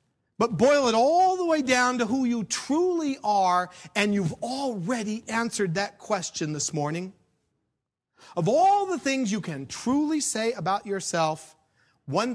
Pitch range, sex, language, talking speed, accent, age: 150-240 Hz, male, English, 150 wpm, American, 40-59